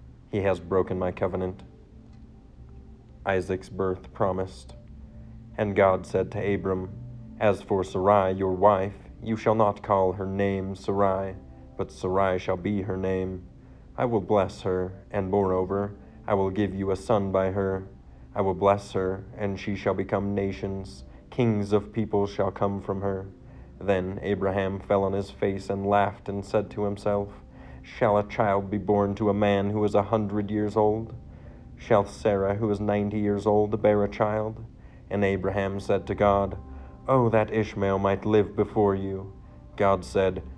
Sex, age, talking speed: male, 40-59, 165 wpm